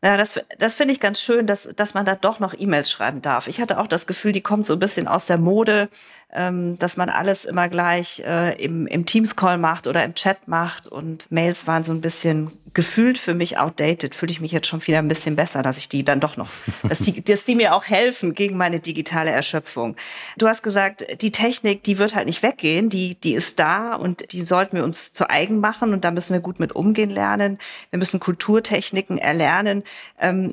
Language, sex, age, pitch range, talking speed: German, female, 40-59, 165-200 Hz, 225 wpm